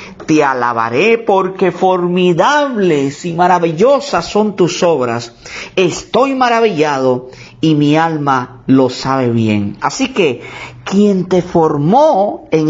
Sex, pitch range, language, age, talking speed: male, 165-265 Hz, Spanish, 50-69, 110 wpm